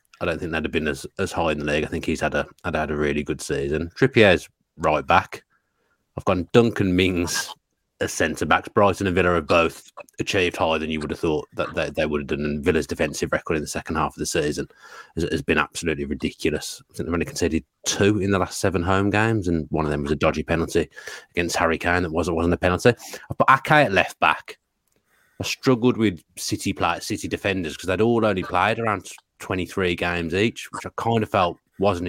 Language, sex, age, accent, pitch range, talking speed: English, male, 30-49, British, 80-95 Hz, 230 wpm